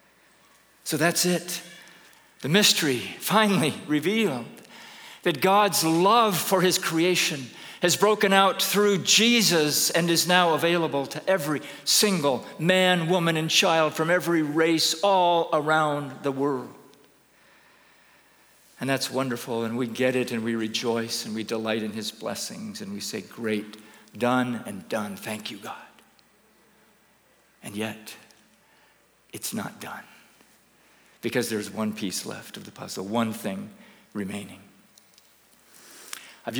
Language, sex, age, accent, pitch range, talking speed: English, male, 50-69, American, 125-180 Hz, 130 wpm